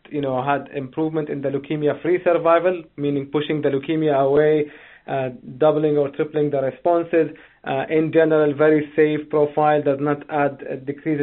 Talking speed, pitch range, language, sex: 165 wpm, 145-160 Hz, English, male